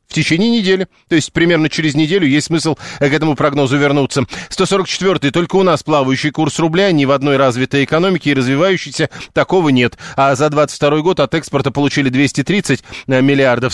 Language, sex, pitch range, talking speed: Russian, male, 130-165 Hz, 170 wpm